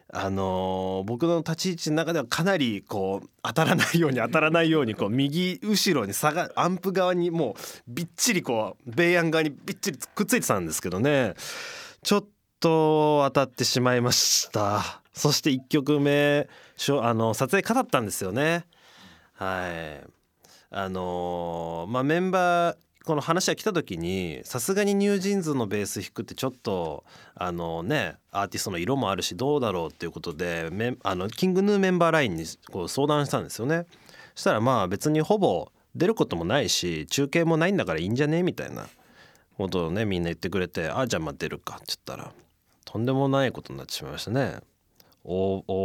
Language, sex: Japanese, male